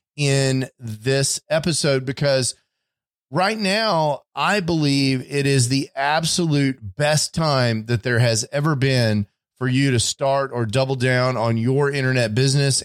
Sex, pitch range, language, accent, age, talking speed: male, 125-145 Hz, English, American, 30-49, 140 wpm